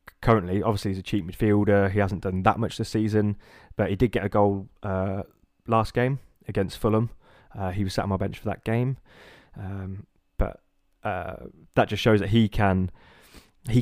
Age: 20-39